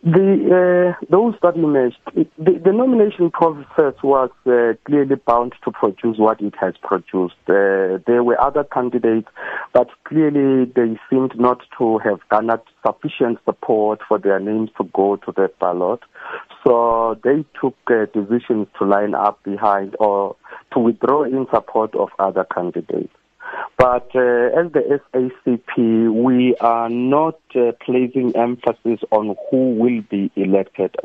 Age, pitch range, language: 50-69, 105-130 Hz, English